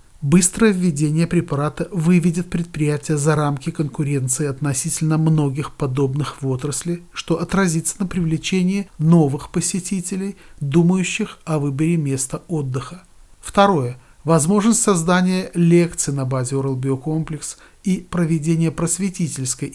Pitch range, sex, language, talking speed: 140-175 Hz, male, Russian, 105 wpm